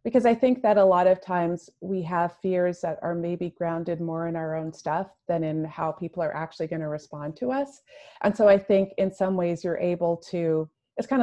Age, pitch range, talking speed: 30-49, 170-195 Hz, 230 wpm